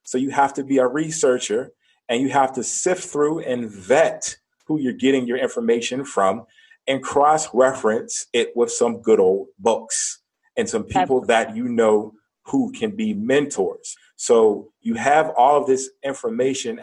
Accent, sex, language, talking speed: American, male, English, 165 wpm